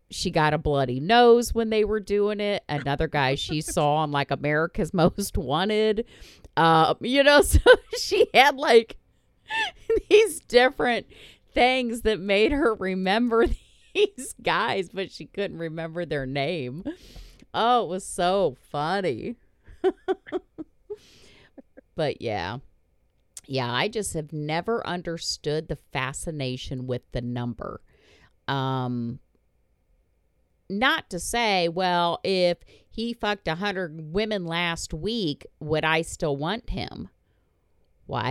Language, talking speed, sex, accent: English, 120 wpm, female, American